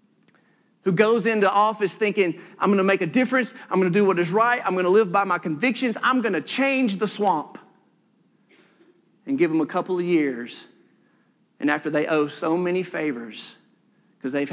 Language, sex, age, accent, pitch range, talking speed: English, male, 40-59, American, 160-230 Hz, 195 wpm